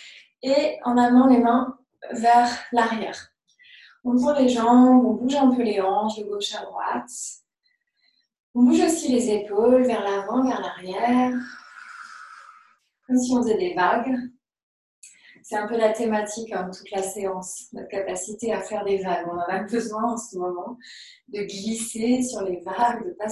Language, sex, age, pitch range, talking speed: French, female, 20-39, 210-260 Hz, 170 wpm